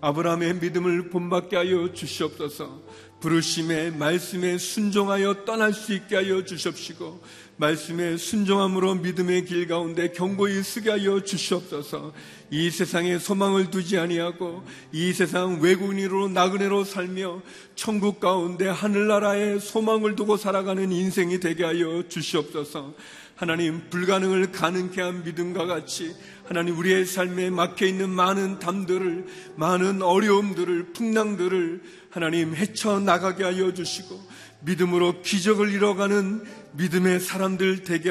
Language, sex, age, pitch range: Korean, male, 40-59, 170-190 Hz